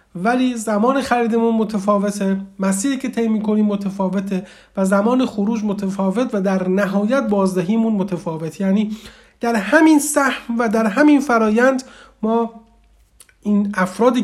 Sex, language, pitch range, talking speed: male, Persian, 200-245 Hz, 120 wpm